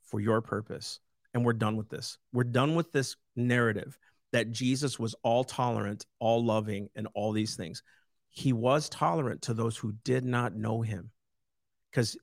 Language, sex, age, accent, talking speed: English, male, 50-69, American, 160 wpm